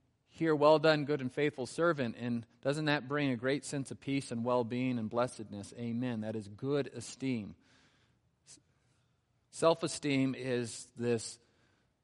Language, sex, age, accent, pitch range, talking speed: English, male, 40-59, American, 115-140 Hz, 140 wpm